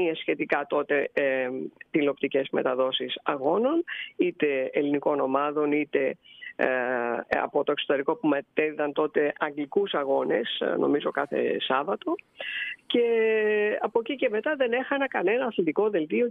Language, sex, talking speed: Greek, female, 110 wpm